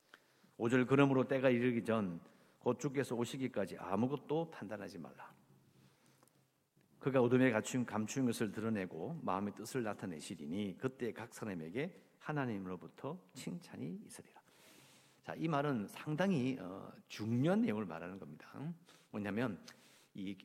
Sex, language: male, English